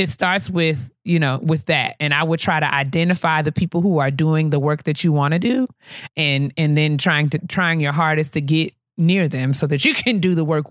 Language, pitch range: English, 140-170 Hz